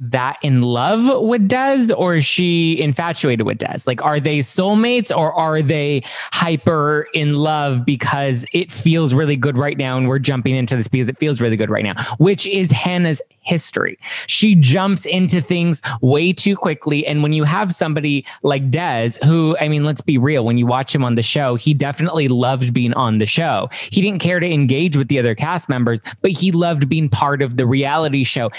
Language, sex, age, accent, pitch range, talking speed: English, male, 20-39, American, 130-170 Hz, 205 wpm